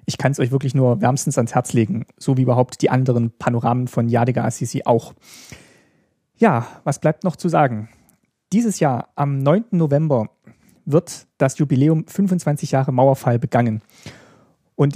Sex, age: male, 40-59